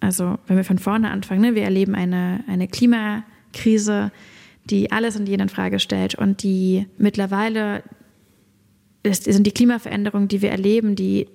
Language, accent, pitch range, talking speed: German, German, 195-225 Hz, 155 wpm